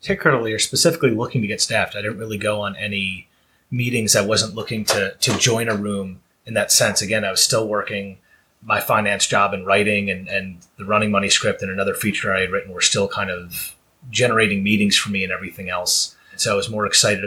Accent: American